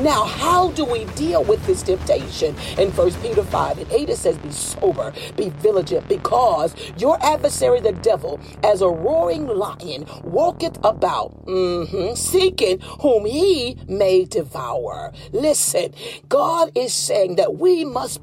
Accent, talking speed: American, 140 wpm